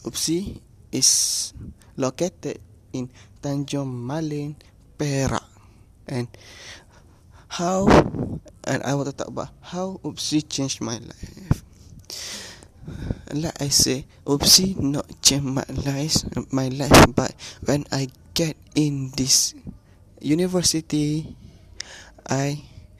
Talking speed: 100 wpm